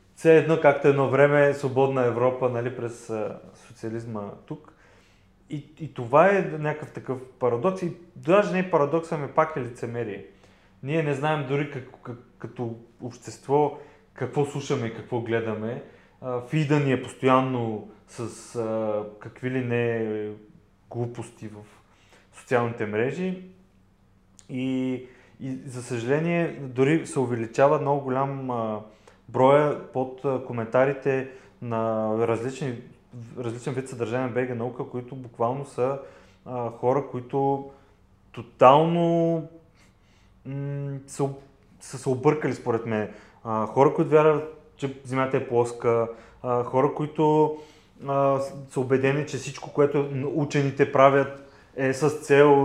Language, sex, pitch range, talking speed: Bulgarian, male, 115-145 Hz, 125 wpm